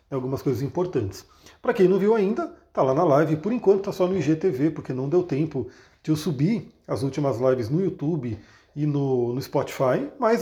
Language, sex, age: Portuguese, male, 40-59